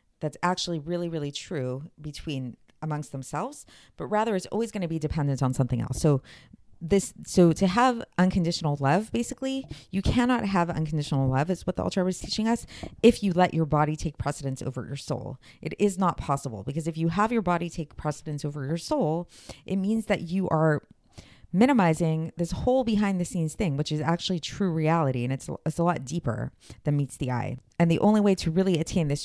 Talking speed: 205 wpm